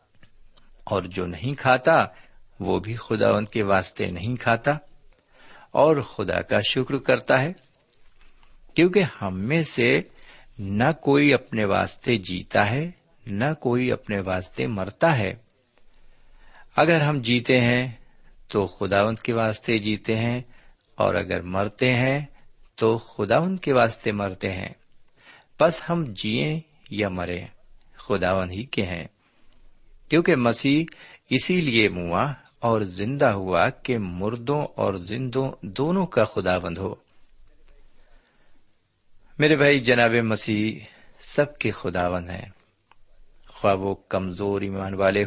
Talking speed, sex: 120 wpm, male